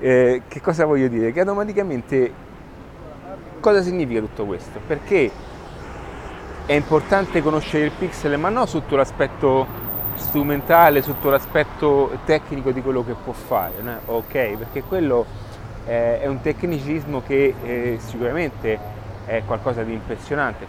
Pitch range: 115-160 Hz